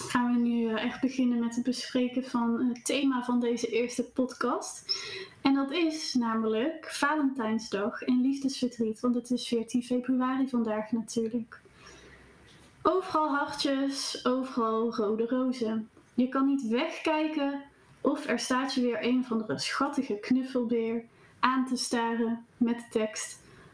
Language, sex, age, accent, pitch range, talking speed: Dutch, female, 20-39, Dutch, 235-275 Hz, 135 wpm